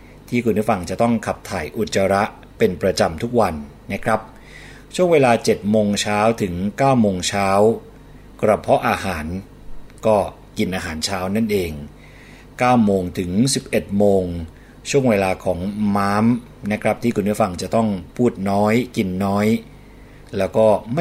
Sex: male